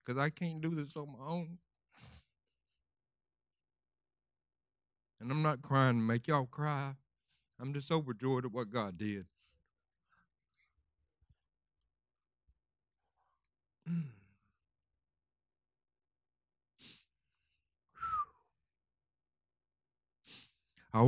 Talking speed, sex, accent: 70 wpm, male, American